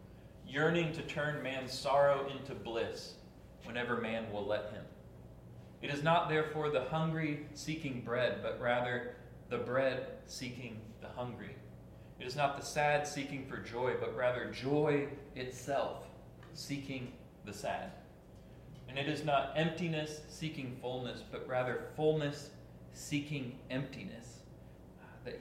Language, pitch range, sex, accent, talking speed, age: English, 115-150 Hz, male, American, 130 wpm, 30-49